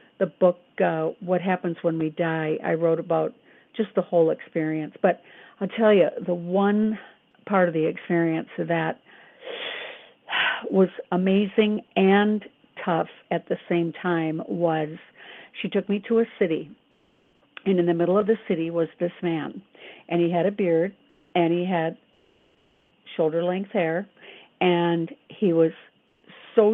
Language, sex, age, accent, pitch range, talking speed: English, female, 50-69, American, 170-205 Hz, 150 wpm